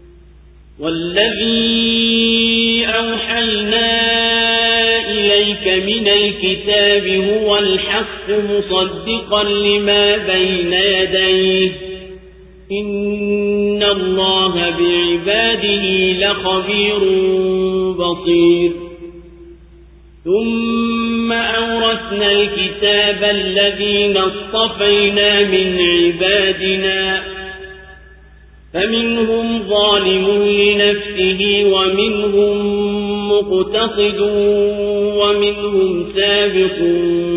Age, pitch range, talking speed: 40-59, 185-205 Hz, 50 wpm